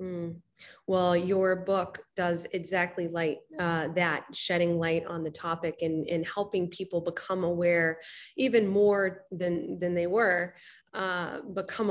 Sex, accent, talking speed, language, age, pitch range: female, American, 135 wpm, English, 20-39, 165-190 Hz